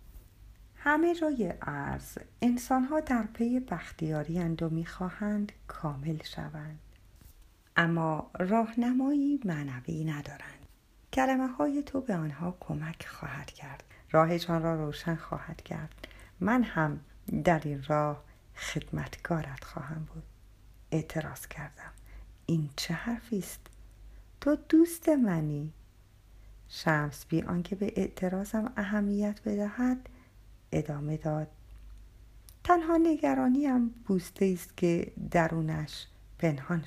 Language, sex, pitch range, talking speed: Persian, female, 150-220 Hz, 100 wpm